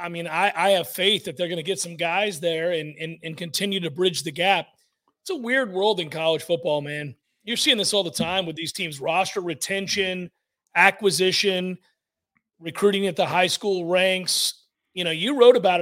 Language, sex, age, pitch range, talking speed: English, male, 40-59, 180-240 Hz, 200 wpm